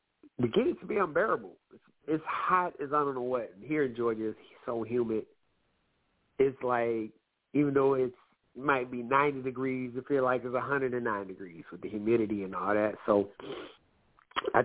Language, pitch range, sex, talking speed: English, 105-135 Hz, male, 185 wpm